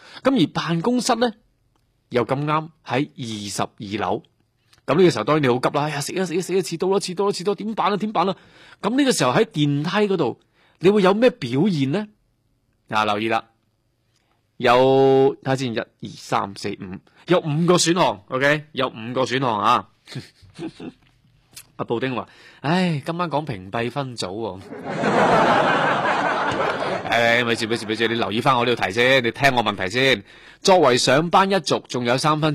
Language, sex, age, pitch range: Chinese, male, 20-39, 120-185 Hz